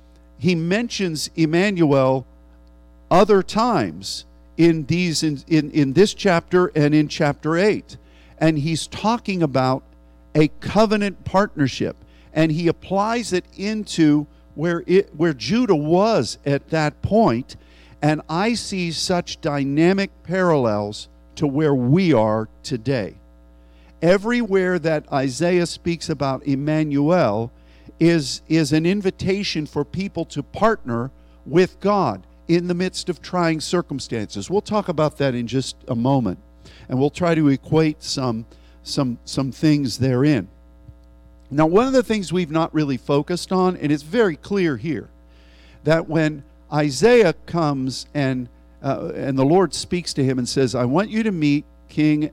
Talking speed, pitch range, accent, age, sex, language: 140 wpm, 125-175 Hz, American, 50-69, male, English